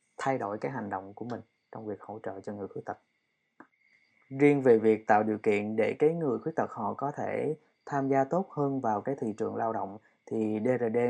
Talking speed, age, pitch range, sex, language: 220 wpm, 20-39, 105-130 Hz, male, Vietnamese